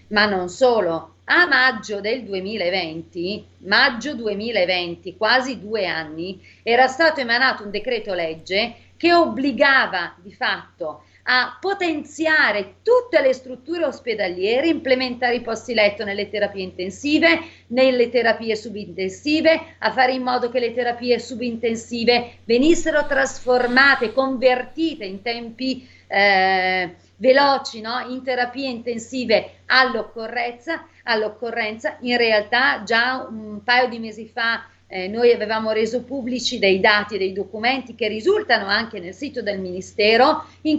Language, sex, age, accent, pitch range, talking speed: Italian, female, 40-59, native, 210-260 Hz, 120 wpm